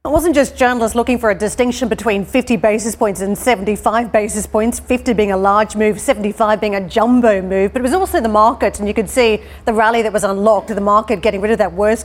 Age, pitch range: 40-59, 210-235 Hz